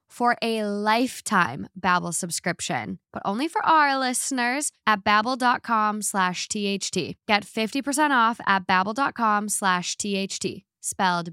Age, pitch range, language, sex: 10-29, 190-245 Hz, English, female